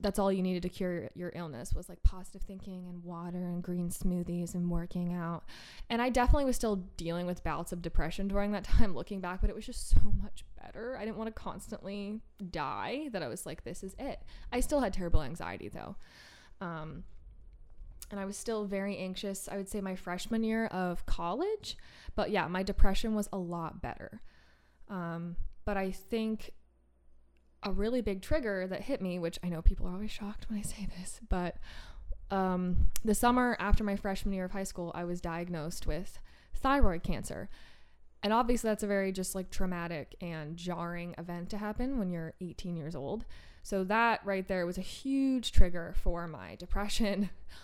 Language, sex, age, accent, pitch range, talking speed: English, female, 20-39, American, 175-210 Hz, 190 wpm